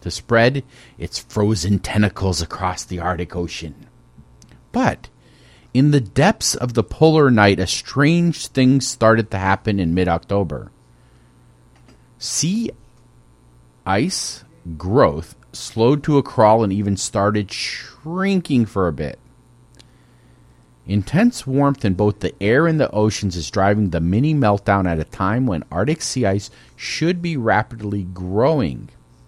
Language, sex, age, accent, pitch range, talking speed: English, male, 40-59, American, 85-130 Hz, 130 wpm